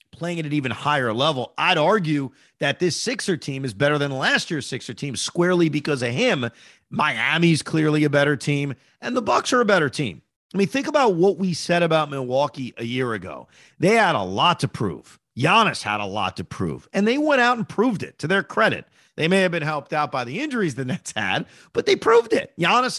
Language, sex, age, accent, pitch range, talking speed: English, male, 40-59, American, 135-200 Hz, 225 wpm